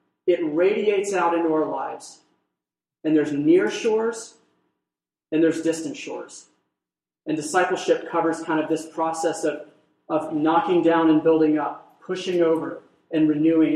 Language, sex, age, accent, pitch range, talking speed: English, male, 30-49, American, 150-175 Hz, 140 wpm